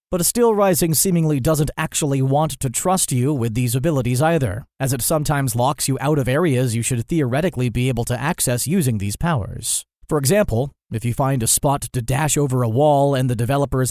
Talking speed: 205 wpm